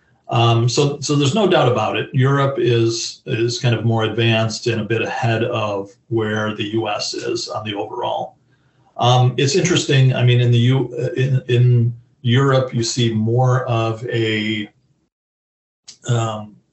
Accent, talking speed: American, 160 wpm